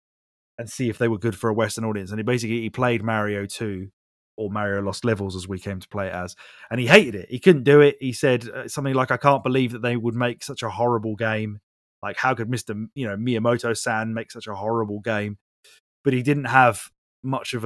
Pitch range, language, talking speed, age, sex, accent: 105-130 Hz, English, 240 wpm, 20-39, male, British